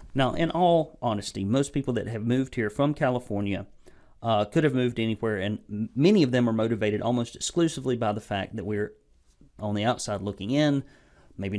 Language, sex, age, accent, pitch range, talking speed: English, male, 40-59, American, 105-145 Hz, 185 wpm